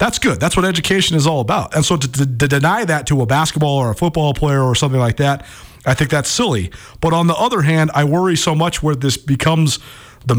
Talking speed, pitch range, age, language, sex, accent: 250 wpm, 125-165 Hz, 40-59, English, male, American